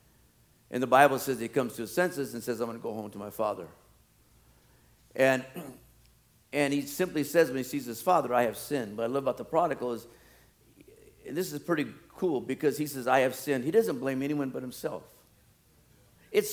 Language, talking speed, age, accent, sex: English, 205 wpm, 50-69, American, male